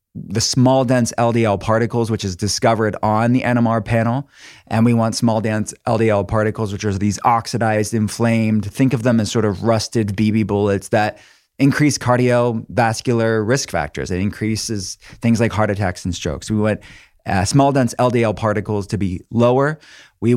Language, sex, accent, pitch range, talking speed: English, male, American, 100-120 Hz, 170 wpm